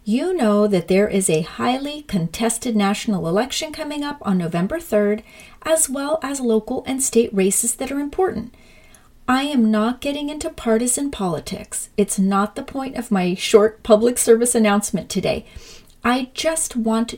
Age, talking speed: 40-59, 160 wpm